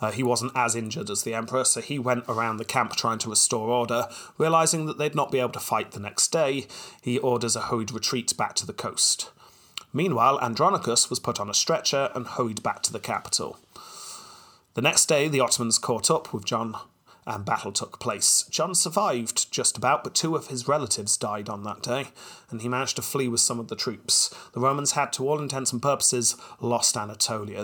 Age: 30-49